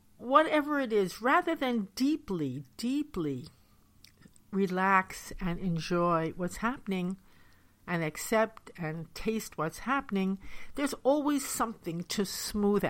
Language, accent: English, American